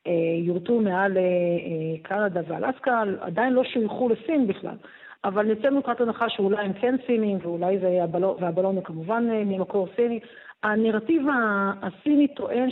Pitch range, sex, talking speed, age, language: 185-235 Hz, female, 125 wpm, 40-59, Hebrew